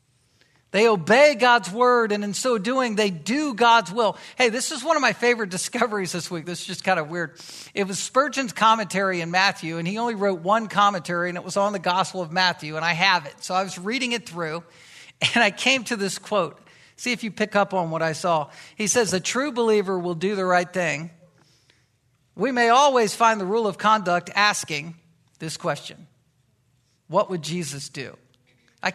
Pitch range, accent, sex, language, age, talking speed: 165-225 Hz, American, male, English, 50-69, 205 wpm